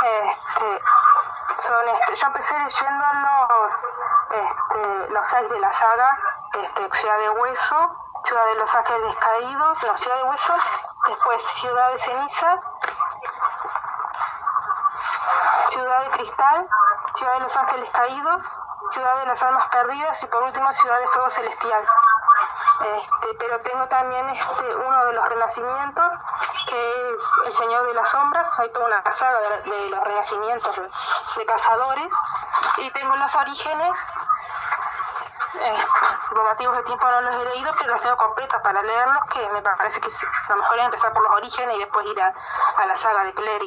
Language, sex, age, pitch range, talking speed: Spanish, female, 20-39, 235-350 Hz, 160 wpm